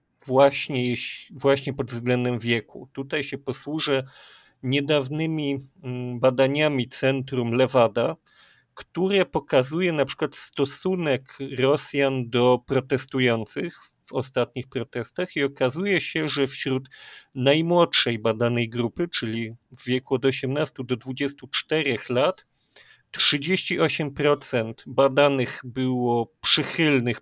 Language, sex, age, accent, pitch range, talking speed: Polish, male, 40-59, native, 125-150 Hz, 95 wpm